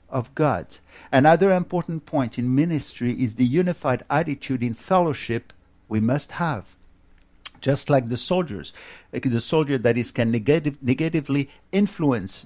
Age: 50-69